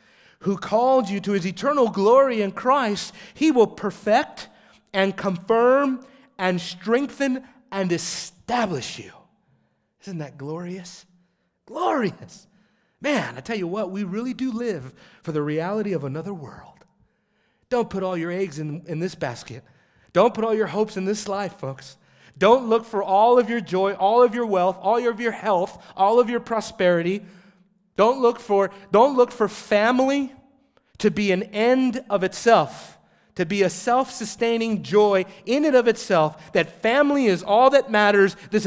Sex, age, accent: male, 30-49, American